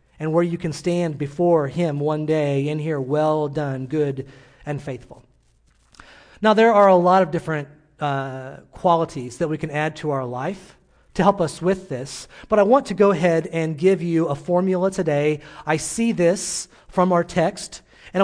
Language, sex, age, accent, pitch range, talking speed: English, male, 30-49, American, 150-190 Hz, 185 wpm